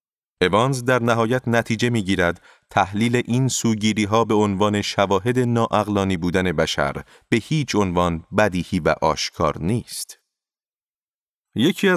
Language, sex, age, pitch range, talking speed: Persian, male, 30-49, 95-120 Hz, 110 wpm